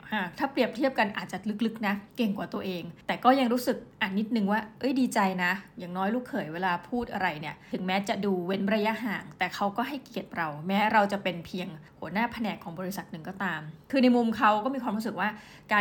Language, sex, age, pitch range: Thai, female, 20-39, 190-240 Hz